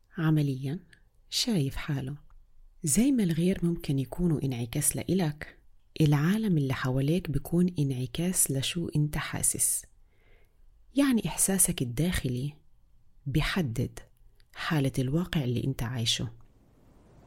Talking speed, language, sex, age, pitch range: 95 wpm, Arabic, female, 30-49, 130-175 Hz